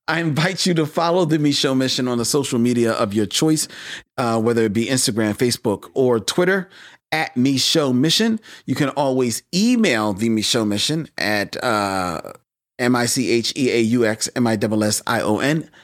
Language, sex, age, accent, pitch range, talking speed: English, male, 40-59, American, 110-155 Hz, 135 wpm